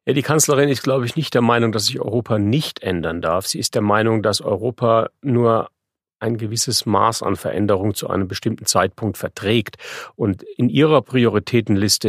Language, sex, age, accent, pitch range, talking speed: German, male, 40-59, German, 100-120 Hz, 180 wpm